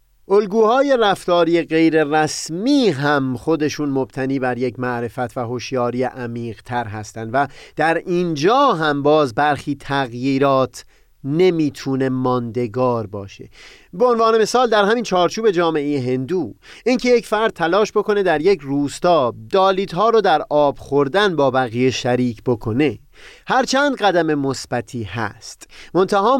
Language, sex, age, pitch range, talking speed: Persian, male, 30-49, 130-200 Hz, 125 wpm